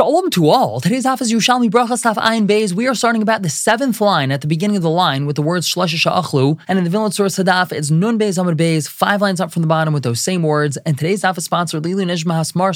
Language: English